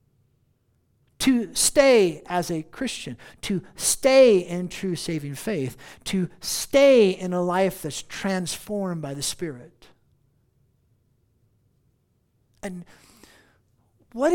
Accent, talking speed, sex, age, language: American, 95 wpm, male, 50-69, English